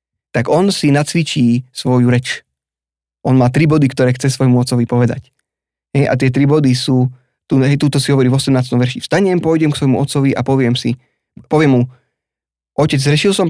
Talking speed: 180 wpm